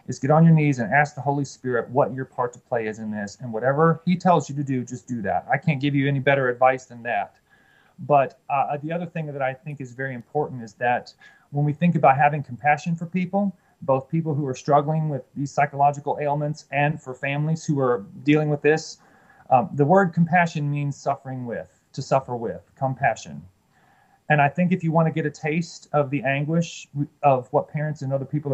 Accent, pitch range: American, 130-160 Hz